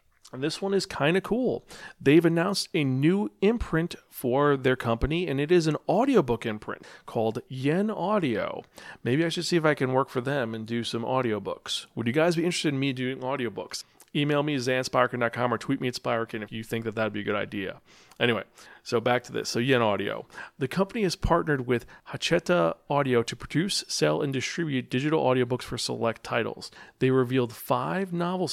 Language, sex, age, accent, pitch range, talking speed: English, male, 40-59, American, 115-155 Hz, 200 wpm